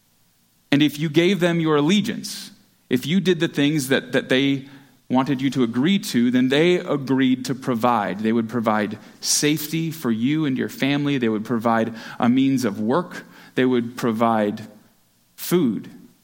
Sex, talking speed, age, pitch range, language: male, 165 wpm, 30-49, 110-160 Hz, English